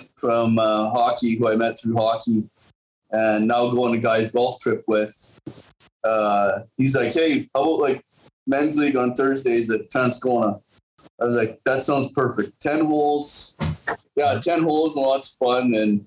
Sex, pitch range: male, 110-130 Hz